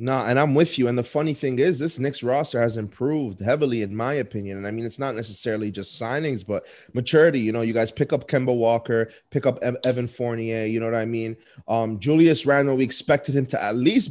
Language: English